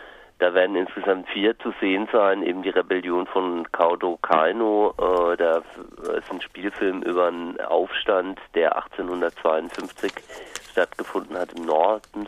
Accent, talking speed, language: German, 130 wpm, German